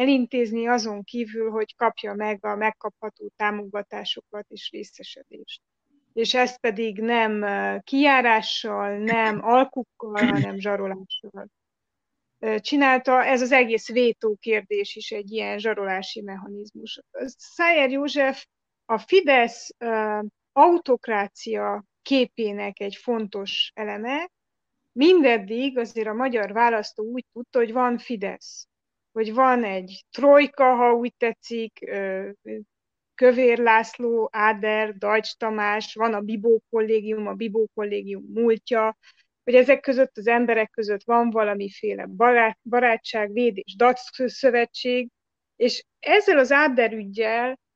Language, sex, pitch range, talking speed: Hungarian, female, 215-255 Hz, 110 wpm